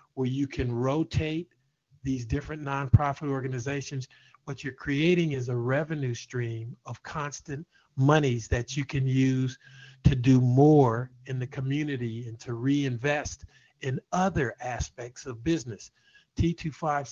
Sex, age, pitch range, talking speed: male, 50-69, 120-145 Hz, 135 wpm